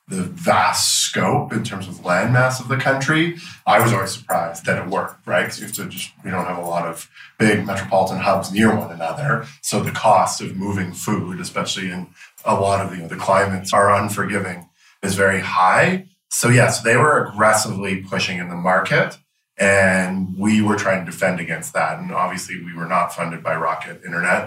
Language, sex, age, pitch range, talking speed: English, male, 20-39, 95-120 Hz, 195 wpm